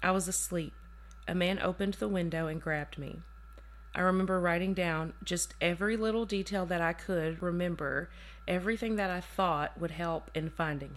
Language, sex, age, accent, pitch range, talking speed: English, female, 30-49, American, 140-190 Hz, 170 wpm